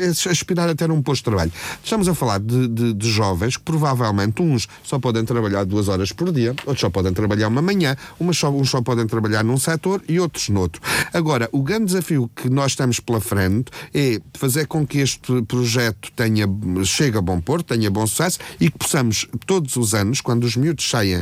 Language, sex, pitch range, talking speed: Portuguese, male, 110-140 Hz, 205 wpm